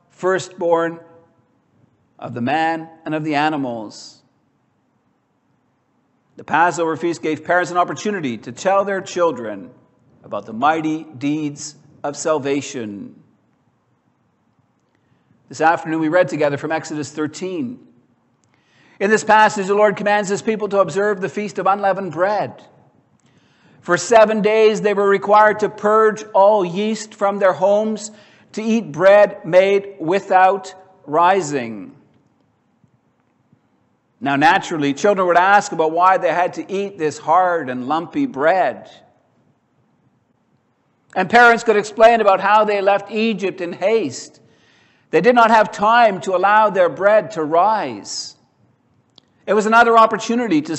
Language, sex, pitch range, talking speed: English, male, 160-210 Hz, 130 wpm